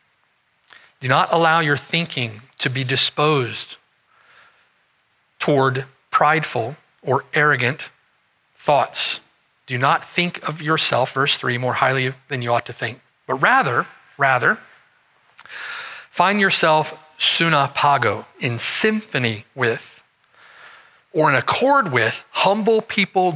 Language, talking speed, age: English, 110 wpm, 40-59